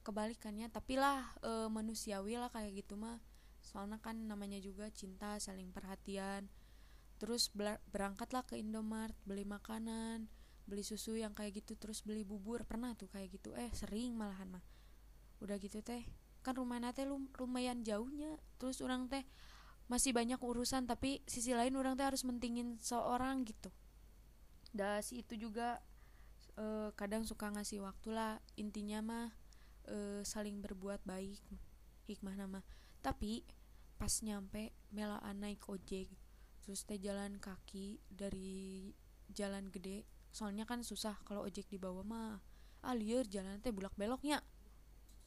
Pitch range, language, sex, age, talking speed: 205-240 Hz, Indonesian, female, 20-39, 140 wpm